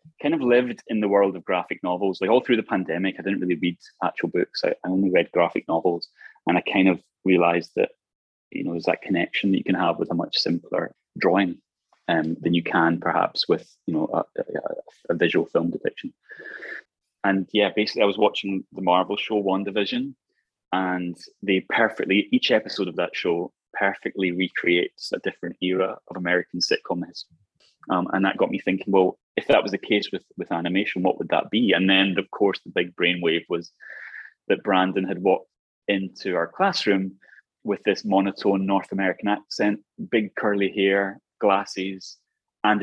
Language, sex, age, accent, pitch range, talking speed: English, male, 20-39, British, 90-100 Hz, 185 wpm